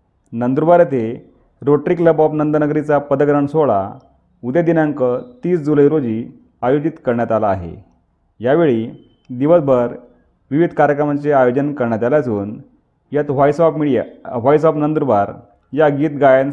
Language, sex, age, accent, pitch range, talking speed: Marathi, male, 40-59, native, 120-155 Hz, 130 wpm